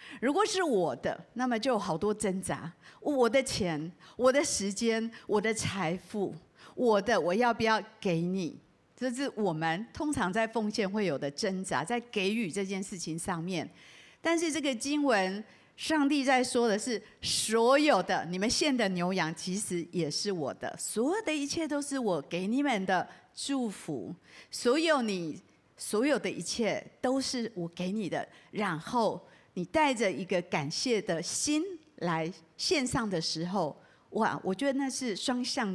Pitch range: 180-255 Hz